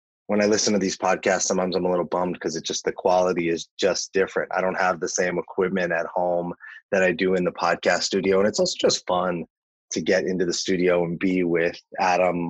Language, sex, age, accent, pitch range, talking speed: English, male, 30-49, American, 85-105 Hz, 230 wpm